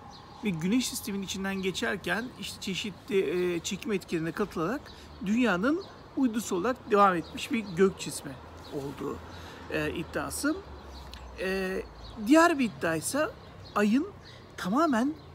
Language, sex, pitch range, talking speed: Turkish, male, 170-235 Hz, 110 wpm